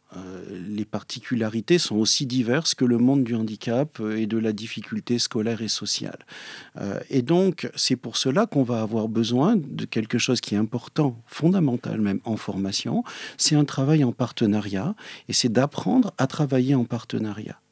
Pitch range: 110-145 Hz